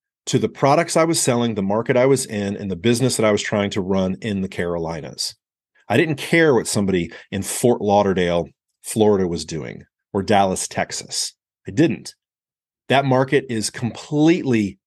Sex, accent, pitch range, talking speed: male, American, 100-135 Hz, 175 wpm